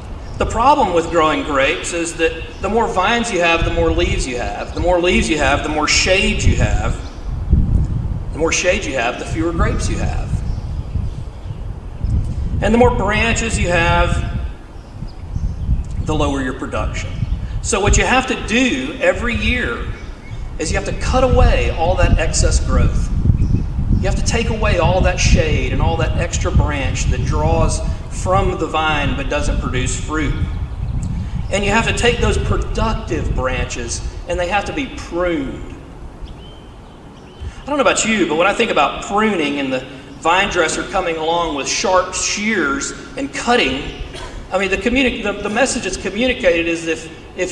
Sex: male